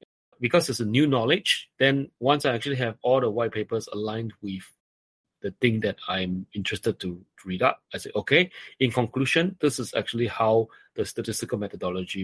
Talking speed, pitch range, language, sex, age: 175 wpm, 105-135 Hz, English, male, 30-49